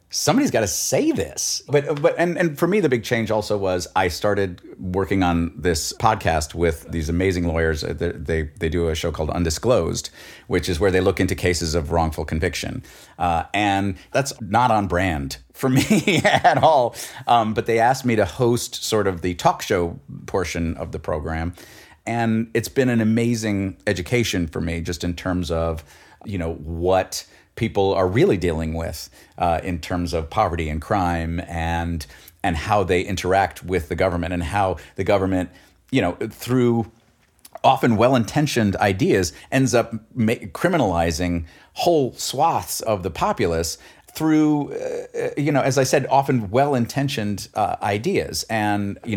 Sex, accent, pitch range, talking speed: male, American, 85-115 Hz, 165 wpm